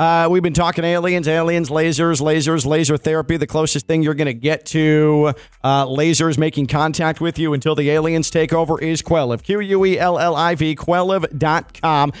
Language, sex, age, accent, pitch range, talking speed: English, male, 40-59, American, 145-175 Hz, 165 wpm